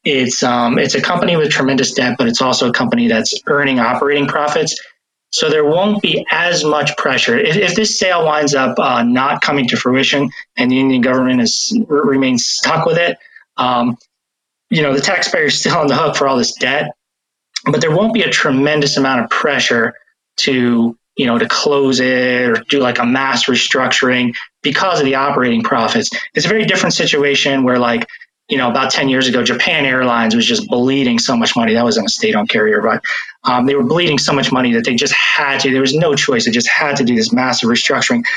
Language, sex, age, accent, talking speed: English, male, 20-39, American, 210 wpm